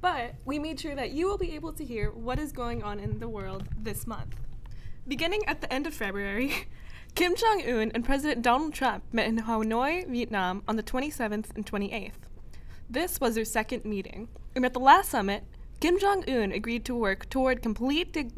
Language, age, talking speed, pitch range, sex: English, 10-29, 195 wpm, 215-285 Hz, female